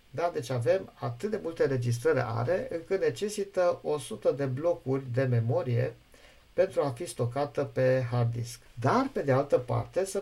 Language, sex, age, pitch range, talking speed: Romanian, male, 50-69, 125-195 Hz, 165 wpm